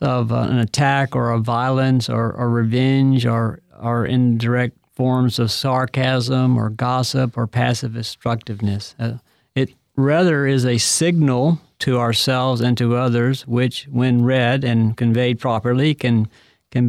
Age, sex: 50-69, male